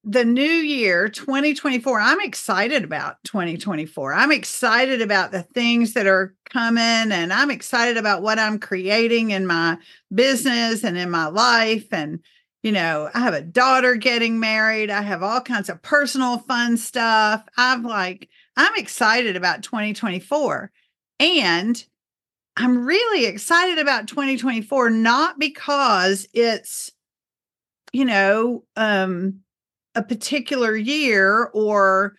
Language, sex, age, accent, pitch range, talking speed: English, female, 50-69, American, 205-260 Hz, 130 wpm